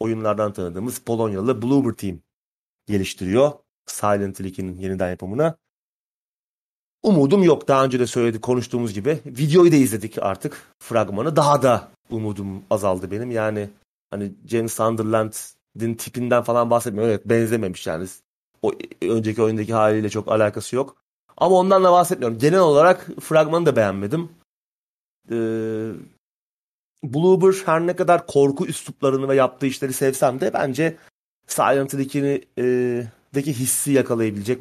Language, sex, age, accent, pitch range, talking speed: Turkish, male, 30-49, native, 105-135 Hz, 125 wpm